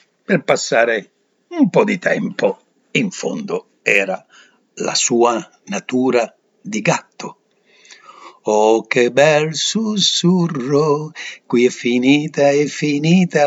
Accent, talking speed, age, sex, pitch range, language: native, 100 wpm, 60-79, male, 135-190 Hz, Italian